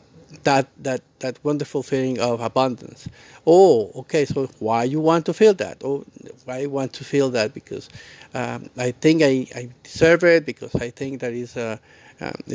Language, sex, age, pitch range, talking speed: English, male, 50-69, 125-150 Hz, 175 wpm